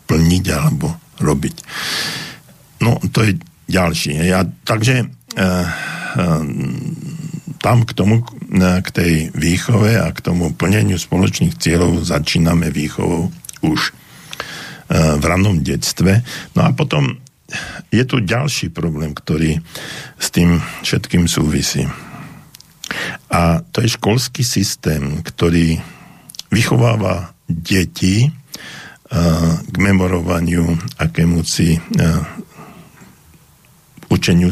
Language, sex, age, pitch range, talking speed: Slovak, male, 60-79, 80-100 Hz, 95 wpm